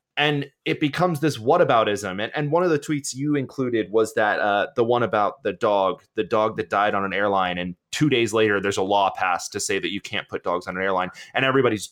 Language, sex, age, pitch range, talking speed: English, male, 20-39, 115-160 Hz, 240 wpm